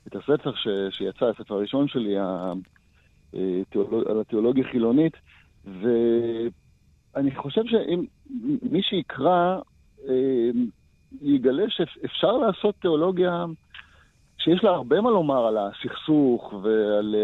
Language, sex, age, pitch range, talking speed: Hebrew, male, 50-69, 120-185 Hz, 90 wpm